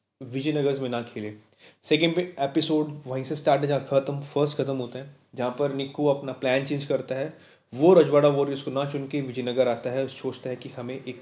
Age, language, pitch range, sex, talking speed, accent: 20-39, Hindi, 120-145 Hz, male, 210 wpm, native